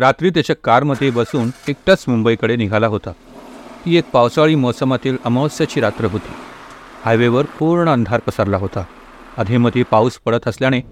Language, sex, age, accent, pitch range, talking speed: Hindi, male, 40-59, native, 115-140 Hz, 130 wpm